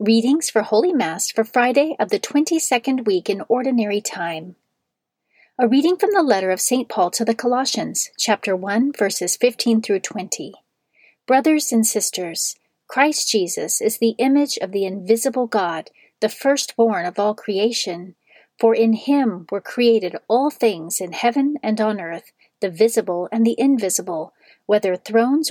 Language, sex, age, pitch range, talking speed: English, female, 40-59, 205-260 Hz, 155 wpm